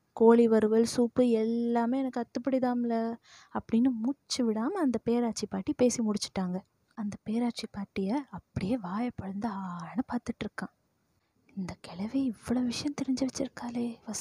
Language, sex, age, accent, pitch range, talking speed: Tamil, female, 20-39, native, 220-265 Hz, 120 wpm